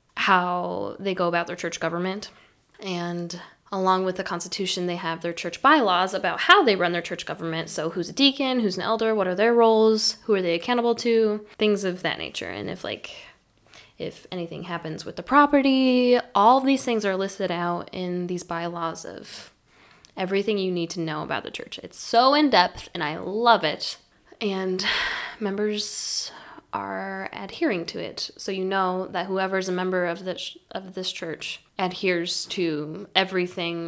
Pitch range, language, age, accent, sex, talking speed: 175-215 Hz, English, 10-29, American, female, 180 wpm